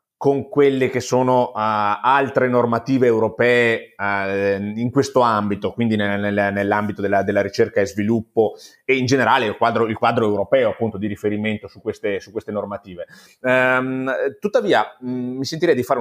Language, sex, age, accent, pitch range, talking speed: Italian, male, 30-49, native, 110-140 Hz, 140 wpm